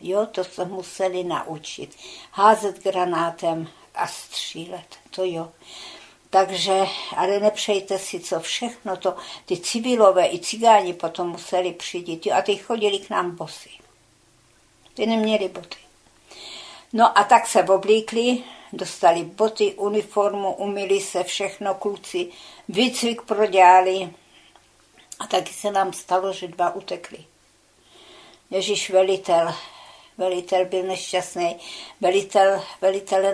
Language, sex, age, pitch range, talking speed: Czech, female, 60-79, 175-205 Hz, 115 wpm